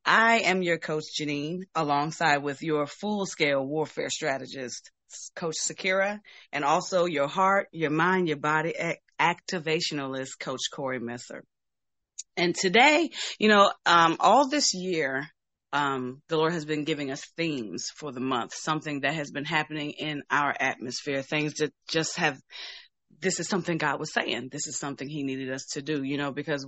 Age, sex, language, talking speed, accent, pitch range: 30-49, female, English, 165 wpm, American, 140-175 Hz